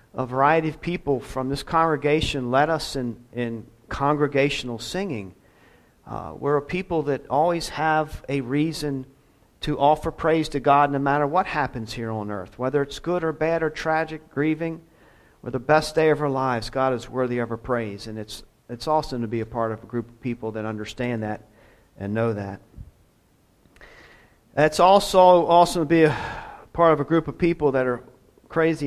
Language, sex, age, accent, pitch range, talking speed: English, male, 50-69, American, 115-150 Hz, 185 wpm